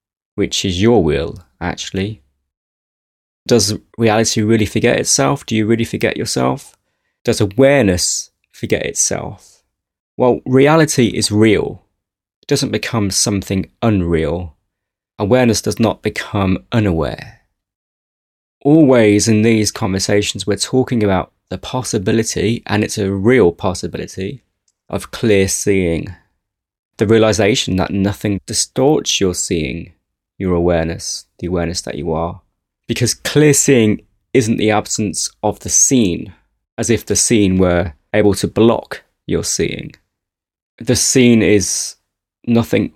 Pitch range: 95-110 Hz